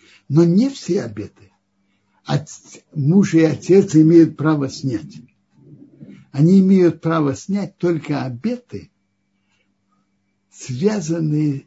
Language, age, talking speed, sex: Russian, 60-79, 95 wpm, male